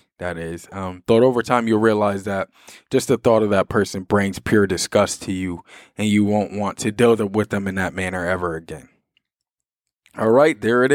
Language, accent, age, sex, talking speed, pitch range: English, American, 20-39, male, 205 wpm, 100-115 Hz